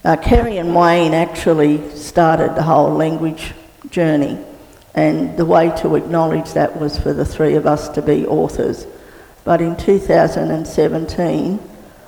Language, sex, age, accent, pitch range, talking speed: English, female, 50-69, Australian, 155-175 Hz, 140 wpm